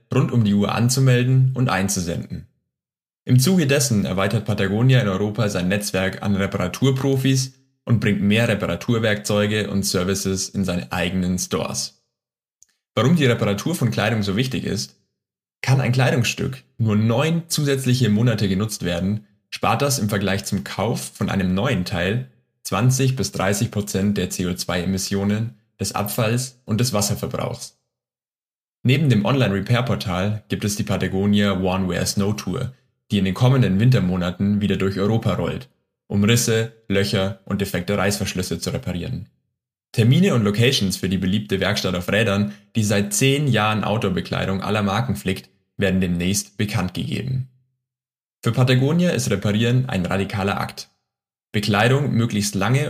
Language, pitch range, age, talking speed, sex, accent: German, 95-120 Hz, 10-29, 140 wpm, male, German